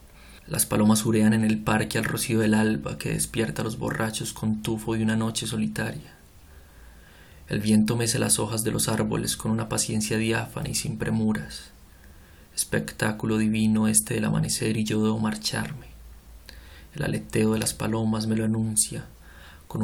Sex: male